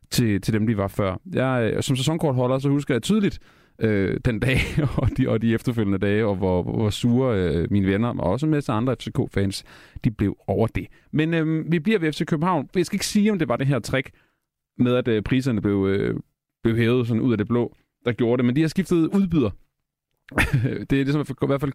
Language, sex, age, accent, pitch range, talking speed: Danish, male, 30-49, native, 110-145 Hz, 235 wpm